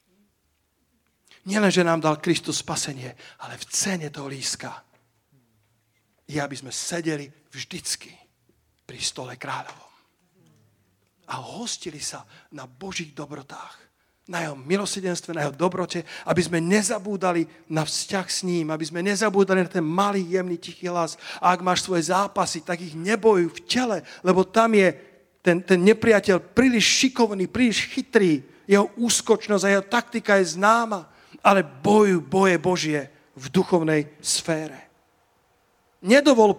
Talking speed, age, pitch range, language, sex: 135 wpm, 40-59, 170-225 Hz, Slovak, male